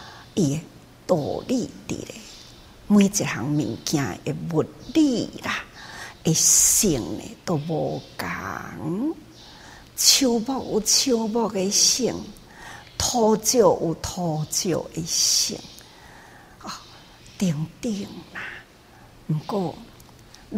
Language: Chinese